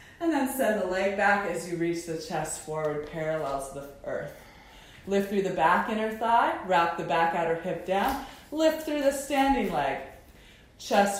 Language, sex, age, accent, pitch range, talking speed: English, female, 20-39, American, 170-225 Hz, 175 wpm